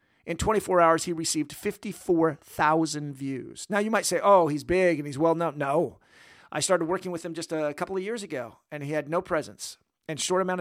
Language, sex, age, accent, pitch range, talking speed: English, male, 50-69, American, 150-190 Hz, 215 wpm